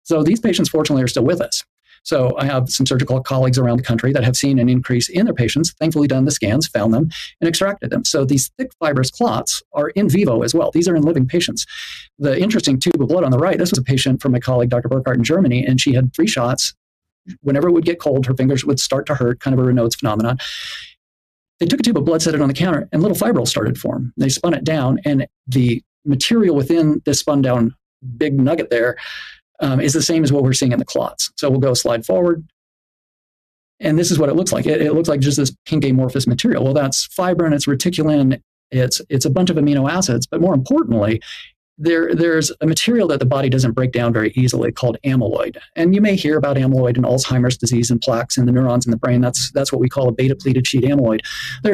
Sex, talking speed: male, 240 wpm